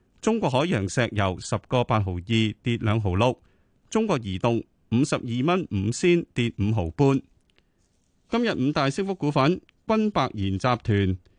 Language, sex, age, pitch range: Chinese, male, 30-49, 105-155 Hz